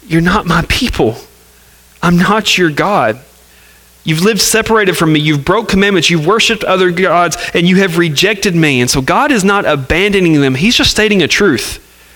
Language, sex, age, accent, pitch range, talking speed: English, male, 30-49, American, 115-190 Hz, 185 wpm